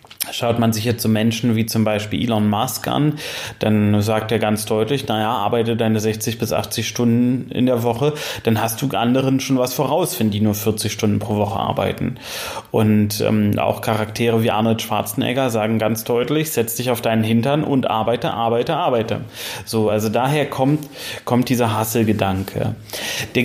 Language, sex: German, male